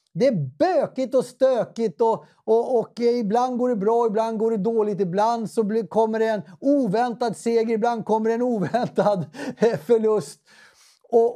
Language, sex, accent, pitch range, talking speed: English, male, Swedish, 165-220 Hz, 160 wpm